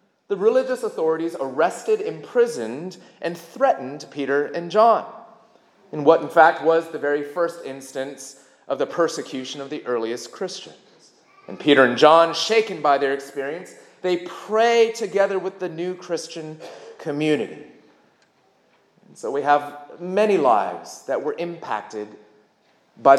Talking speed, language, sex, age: 135 wpm, English, male, 30-49